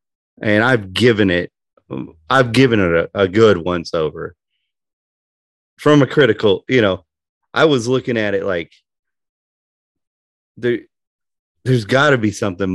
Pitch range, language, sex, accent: 85-125 Hz, English, male, American